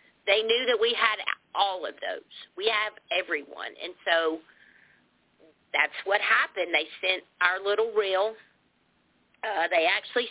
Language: English